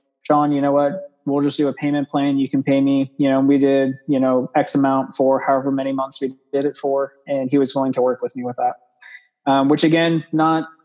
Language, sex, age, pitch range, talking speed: English, male, 20-39, 135-155 Hz, 245 wpm